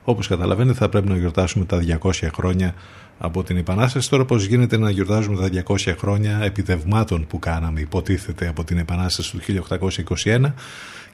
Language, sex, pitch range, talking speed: Greek, male, 90-130 Hz, 155 wpm